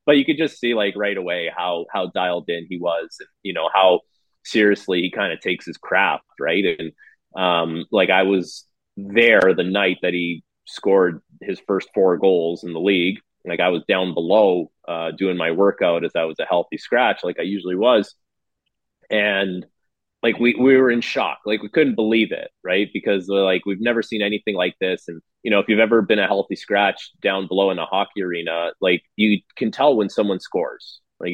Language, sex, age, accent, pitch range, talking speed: English, male, 30-49, American, 95-115 Hz, 205 wpm